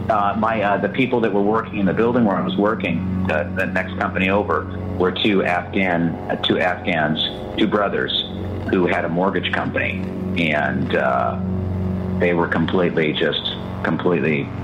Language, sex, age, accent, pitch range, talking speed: English, male, 50-69, American, 95-120 Hz, 165 wpm